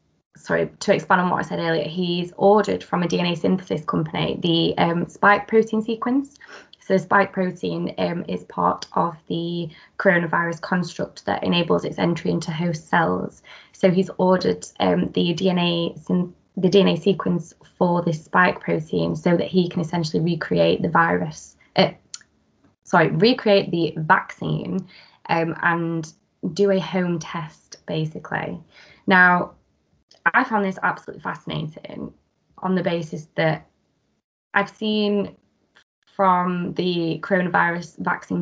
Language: English